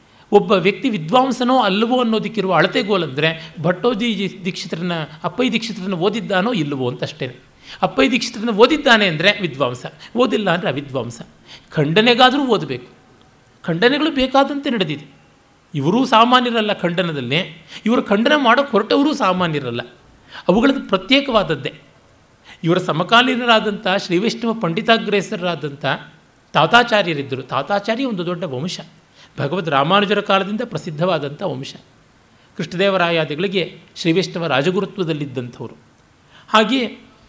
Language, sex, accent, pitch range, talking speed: Kannada, male, native, 155-230 Hz, 90 wpm